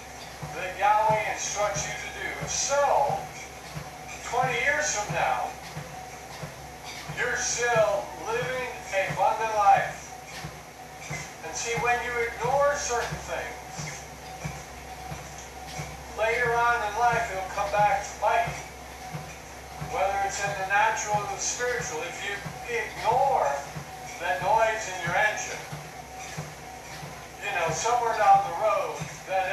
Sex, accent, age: male, American, 50-69